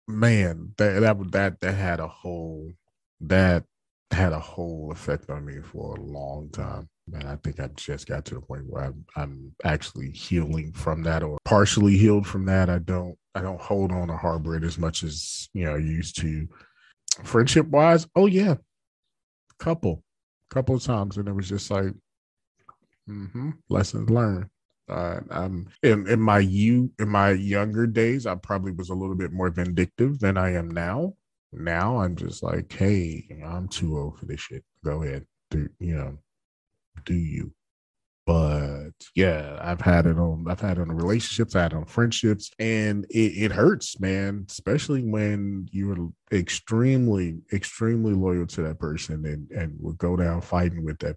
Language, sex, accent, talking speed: English, male, American, 180 wpm